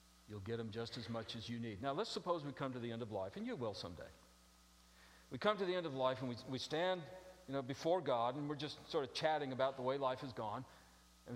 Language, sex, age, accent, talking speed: English, male, 50-69, American, 270 wpm